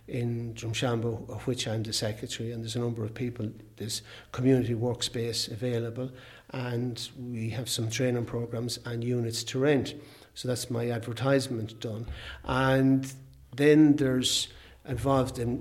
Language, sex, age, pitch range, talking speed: English, male, 60-79, 115-130 Hz, 140 wpm